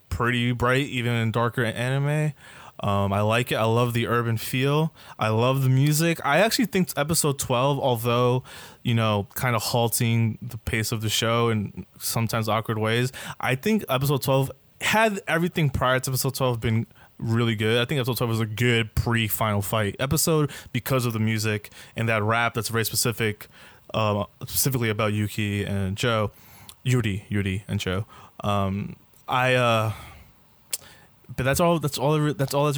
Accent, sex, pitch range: American, male, 110-130 Hz